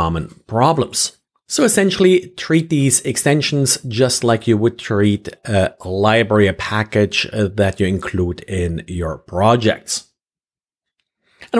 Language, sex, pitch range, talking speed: English, male, 105-130 Hz, 120 wpm